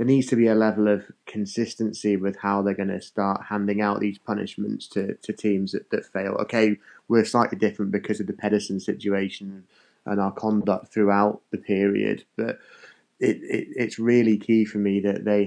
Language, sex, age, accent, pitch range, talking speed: English, male, 20-39, British, 100-110 Hz, 190 wpm